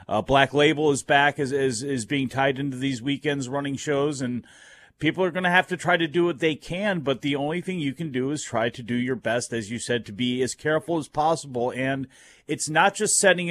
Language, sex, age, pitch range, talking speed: English, male, 40-59, 125-150 Hz, 245 wpm